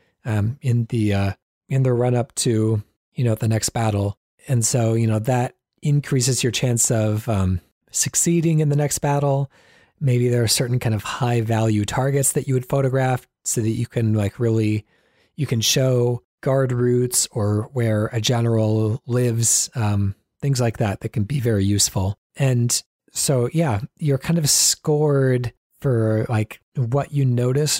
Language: English